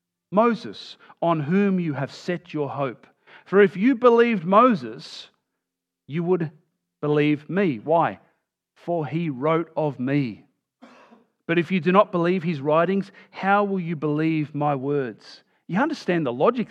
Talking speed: 145 wpm